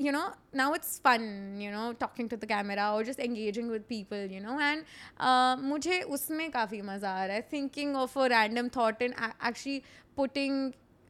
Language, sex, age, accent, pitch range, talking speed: Hindi, female, 20-39, native, 220-280 Hz, 190 wpm